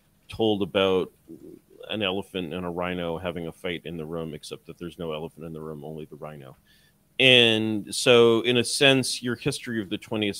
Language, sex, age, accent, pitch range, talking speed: English, male, 40-59, American, 80-105 Hz, 195 wpm